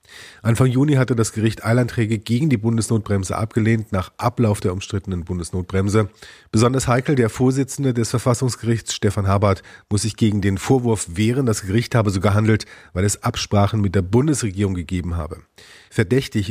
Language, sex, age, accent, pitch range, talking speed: German, male, 40-59, German, 100-115 Hz, 155 wpm